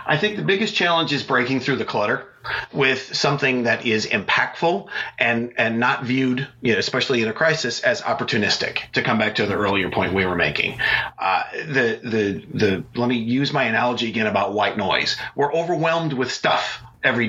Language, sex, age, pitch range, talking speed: English, male, 40-59, 120-155 Hz, 190 wpm